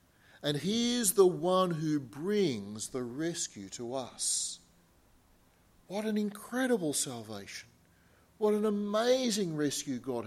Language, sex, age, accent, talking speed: English, male, 40-59, Australian, 115 wpm